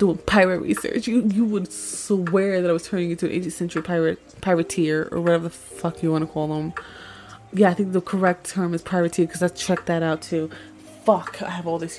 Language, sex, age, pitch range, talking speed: English, female, 20-39, 160-200 Hz, 225 wpm